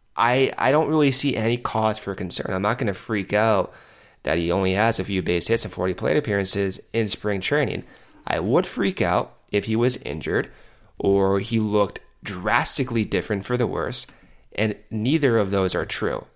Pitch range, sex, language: 100-125 Hz, male, English